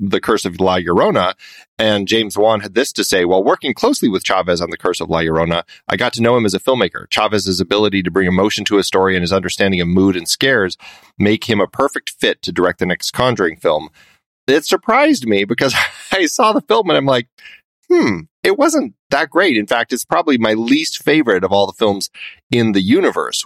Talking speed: 225 wpm